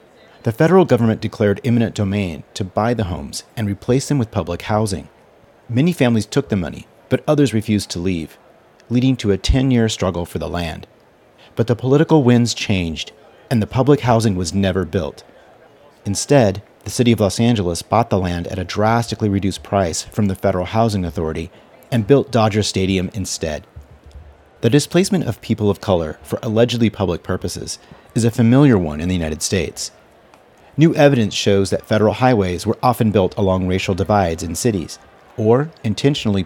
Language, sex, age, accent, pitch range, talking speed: English, male, 40-59, American, 90-115 Hz, 170 wpm